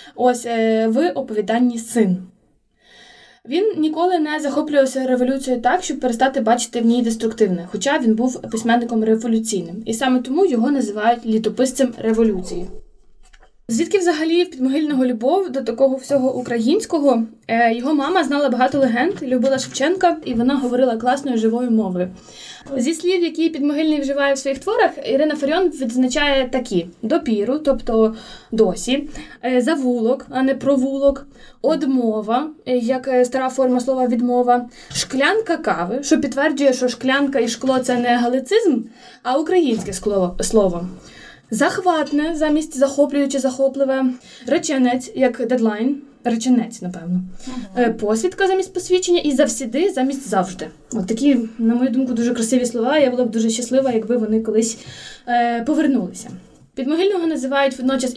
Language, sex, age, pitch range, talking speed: Ukrainian, female, 20-39, 235-280 Hz, 130 wpm